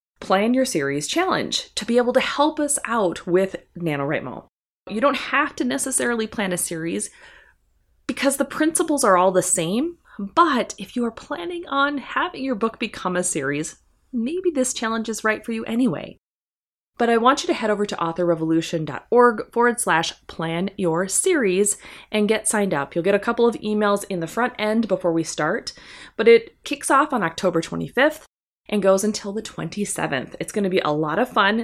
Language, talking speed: English, 185 wpm